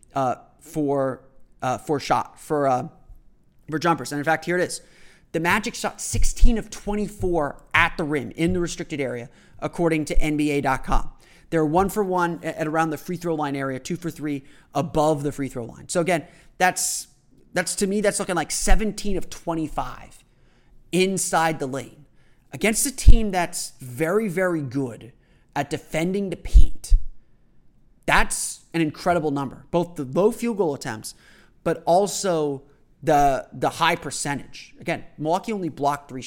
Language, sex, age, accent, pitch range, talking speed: English, male, 30-49, American, 140-175 Hz, 160 wpm